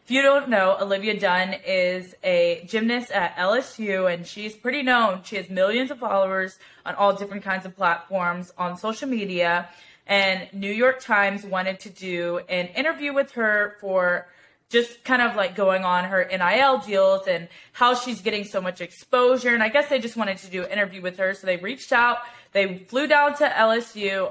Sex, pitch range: female, 185-220 Hz